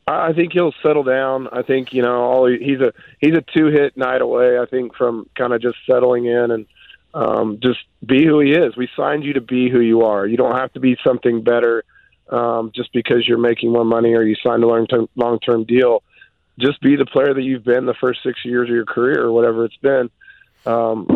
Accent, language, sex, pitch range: American, English, male, 120-130 Hz